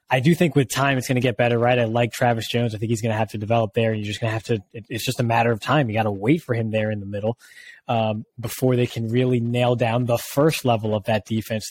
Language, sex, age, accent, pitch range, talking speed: English, male, 20-39, American, 110-130 Hz, 305 wpm